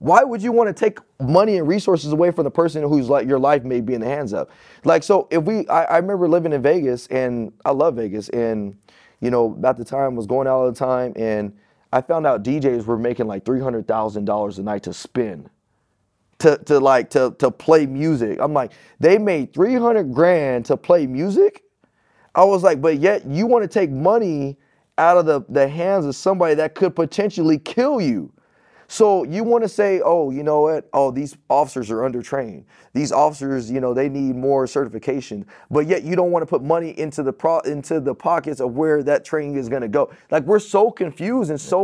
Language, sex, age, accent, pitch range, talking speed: English, male, 20-39, American, 130-175 Hz, 220 wpm